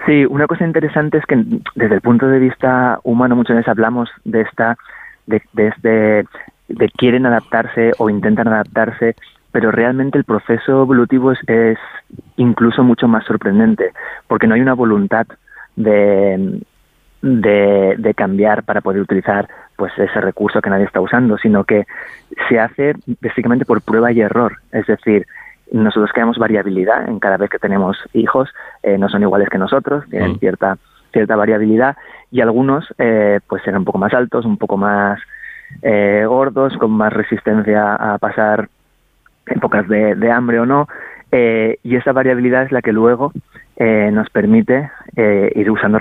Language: Spanish